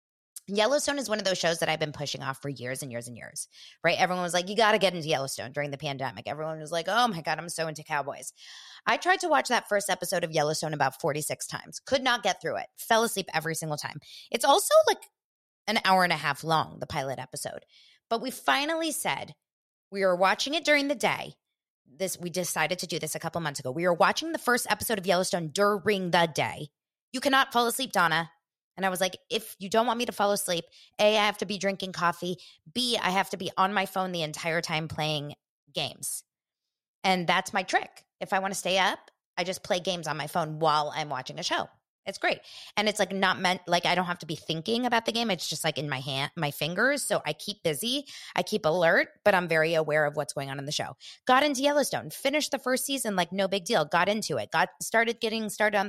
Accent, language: American, English